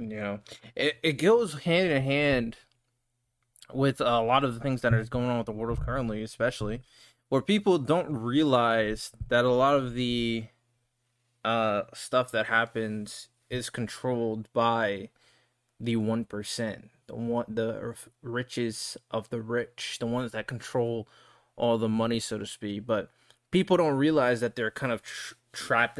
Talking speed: 155 wpm